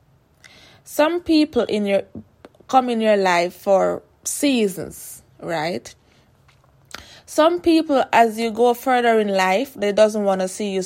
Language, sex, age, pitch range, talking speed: English, female, 20-39, 190-245 Hz, 140 wpm